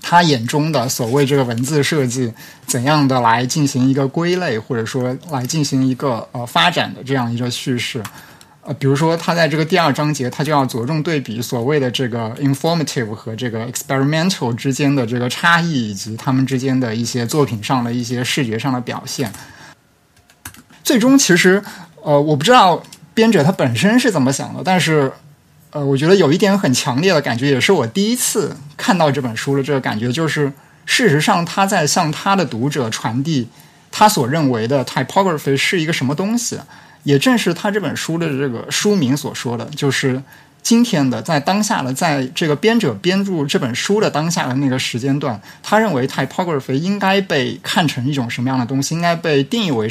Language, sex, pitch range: Chinese, male, 130-170 Hz